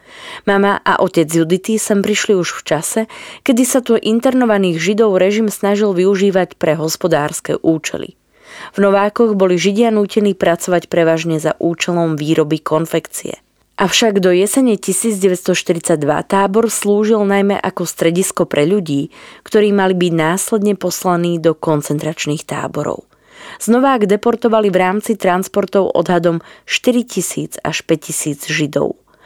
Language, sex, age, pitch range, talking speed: Slovak, female, 20-39, 165-210 Hz, 125 wpm